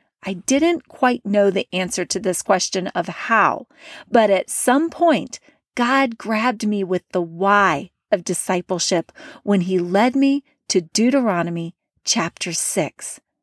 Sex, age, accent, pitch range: female, 40-59, American, 190-250 Hz